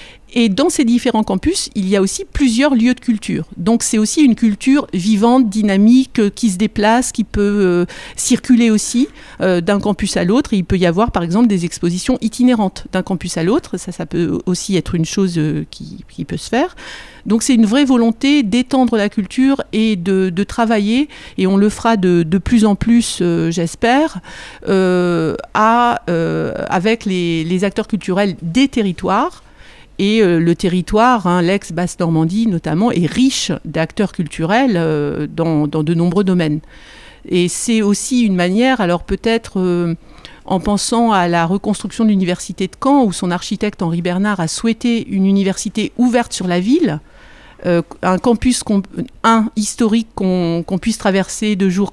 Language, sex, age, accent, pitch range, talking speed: French, female, 50-69, French, 180-235 Hz, 170 wpm